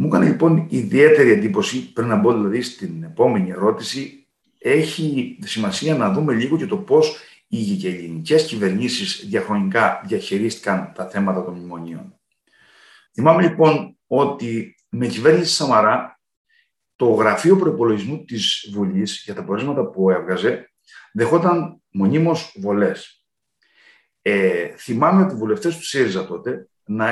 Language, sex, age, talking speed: Greek, male, 50-69, 125 wpm